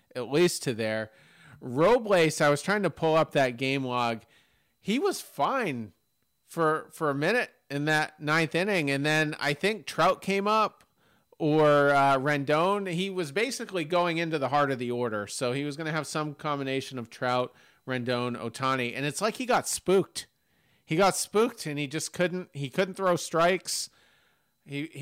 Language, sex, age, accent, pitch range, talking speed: English, male, 40-59, American, 125-155 Hz, 180 wpm